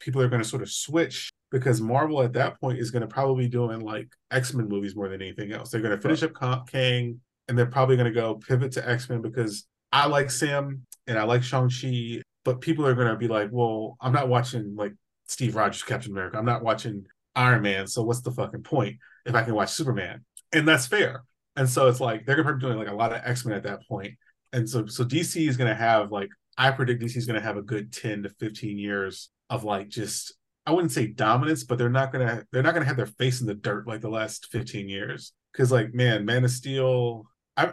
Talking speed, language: 245 wpm, English